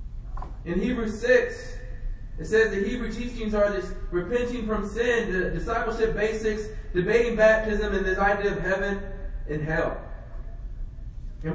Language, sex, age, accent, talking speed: English, male, 20-39, American, 135 wpm